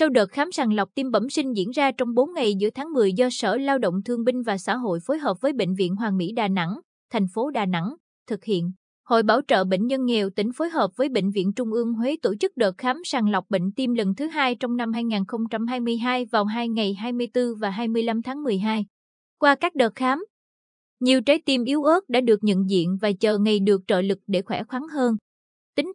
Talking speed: 235 wpm